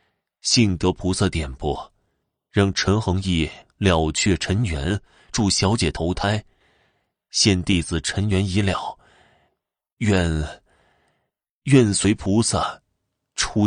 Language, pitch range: Chinese, 90-115 Hz